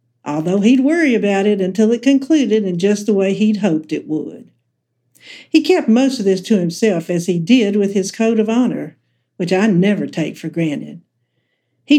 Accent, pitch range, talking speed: American, 175-235 Hz, 190 wpm